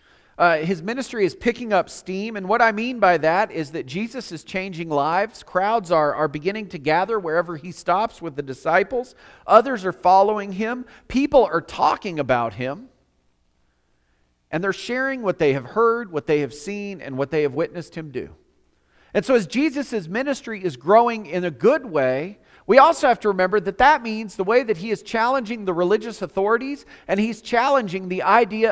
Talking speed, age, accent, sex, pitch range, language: 190 wpm, 40-59, American, male, 155-225 Hz, English